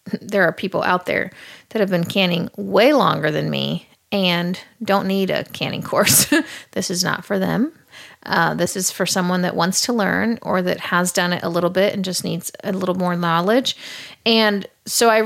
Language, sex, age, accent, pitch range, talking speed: English, female, 30-49, American, 175-215 Hz, 200 wpm